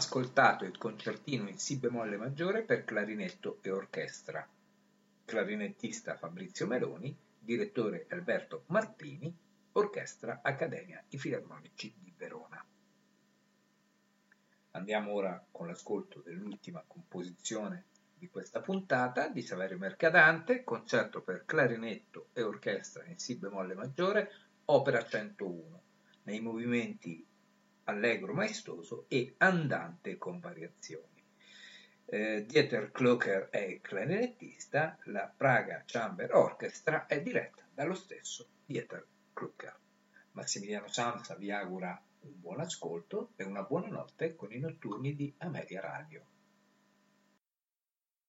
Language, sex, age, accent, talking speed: Italian, male, 50-69, native, 105 wpm